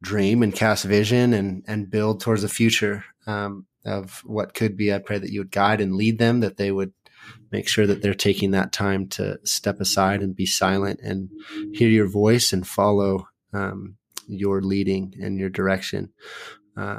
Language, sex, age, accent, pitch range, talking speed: English, male, 30-49, American, 95-110 Hz, 185 wpm